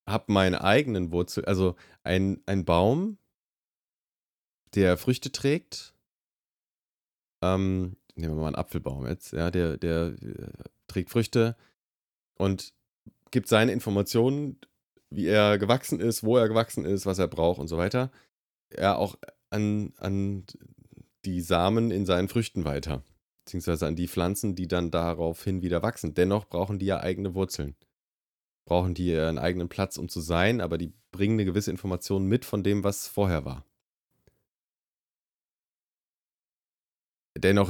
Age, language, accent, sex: 30-49, German, German, male